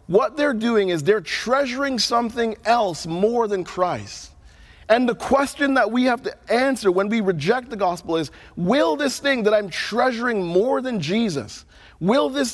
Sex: male